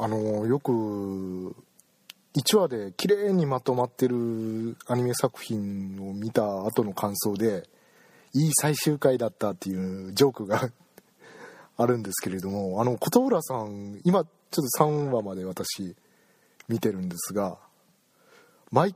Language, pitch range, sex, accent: Japanese, 105-150 Hz, male, native